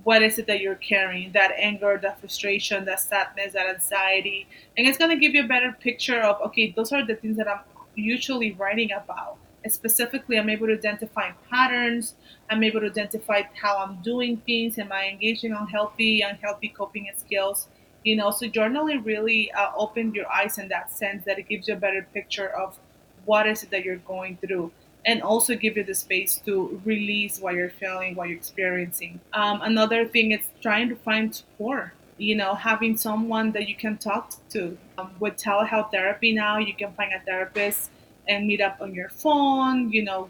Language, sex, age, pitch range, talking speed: English, female, 20-39, 195-220 Hz, 200 wpm